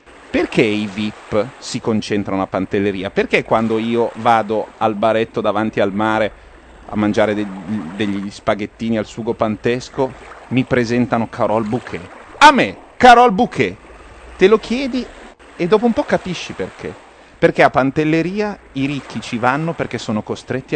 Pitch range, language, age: 115-155 Hz, Italian, 30-49